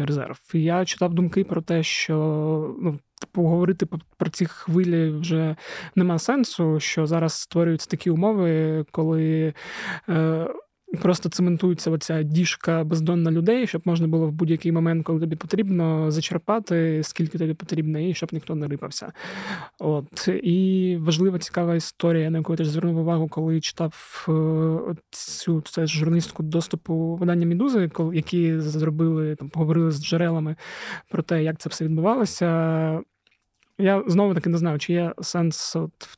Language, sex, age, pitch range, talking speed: Ukrainian, male, 20-39, 155-175 Hz, 145 wpm